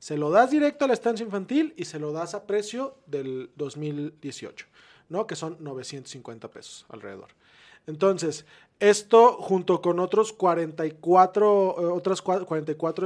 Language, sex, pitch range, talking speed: Spanish, male, 150-185 Hz, 140 wpm